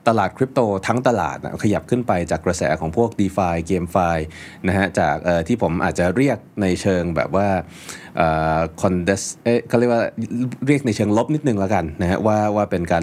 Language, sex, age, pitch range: Thai, male, 30-49, 85-115 Hz